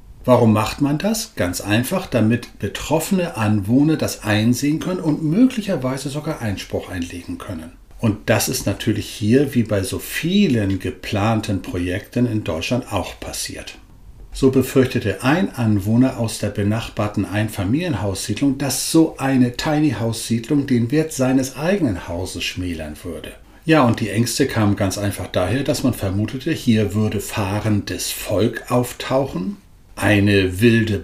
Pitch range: 105-140 Hz